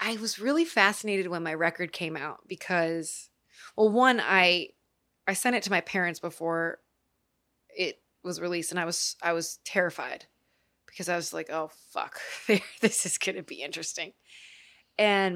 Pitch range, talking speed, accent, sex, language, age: 170-215 Hz, 165 wpm, American, female, English, 20-39